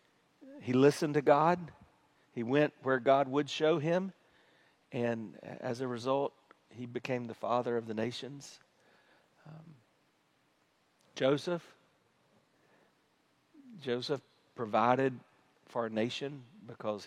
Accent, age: American, 50-69